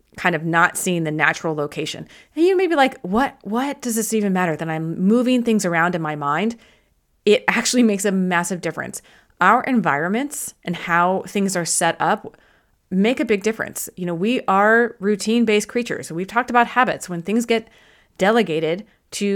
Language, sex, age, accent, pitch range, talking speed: English, female, 30-49, American, 175-230 Hz, 185 wpm